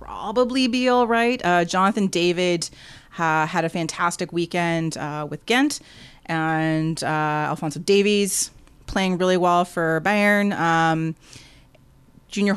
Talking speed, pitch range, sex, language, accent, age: 120 wpm, 155-195 Hz, female, English, American, 30-49